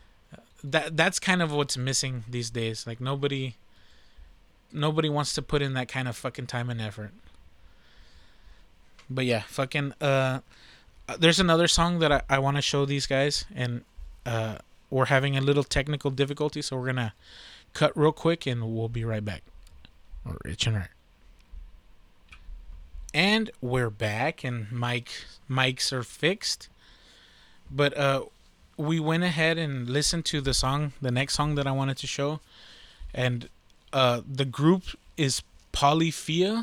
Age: 20-39